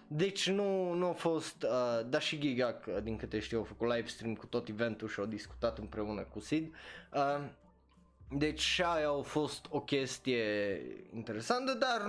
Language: Romanian